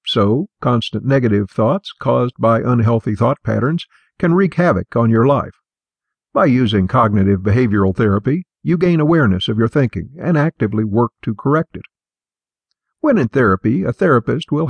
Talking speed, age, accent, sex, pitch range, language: 155 wpm, 50-69, American, male, 110-155 Hz, English